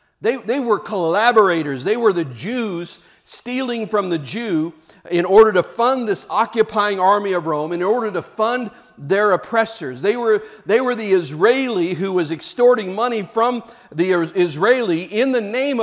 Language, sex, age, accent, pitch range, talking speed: English, male, 50-69, American, 175-240 Hz, 165 wpm